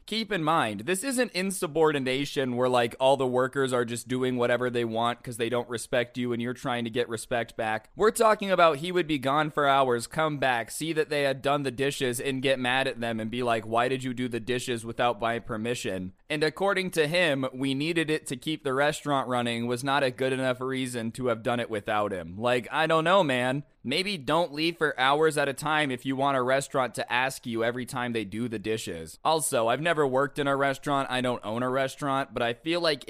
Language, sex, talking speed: English, male, 240 wpm